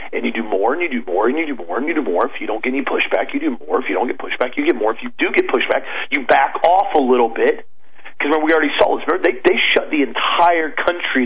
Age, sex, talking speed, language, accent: 40-59, male, 300 wpm, English, American